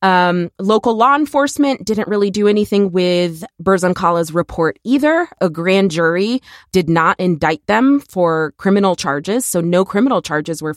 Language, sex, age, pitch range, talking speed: English, female, 20-39, 170-225 Hz, 150 wpm